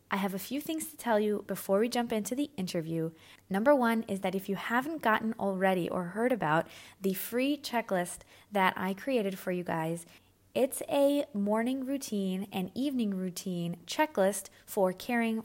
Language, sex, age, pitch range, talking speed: English, female, 20-39, 185-235 Hz, 175 wpm